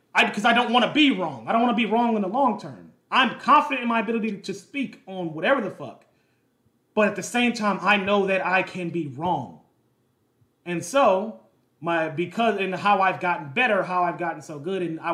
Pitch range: 165-220 Hz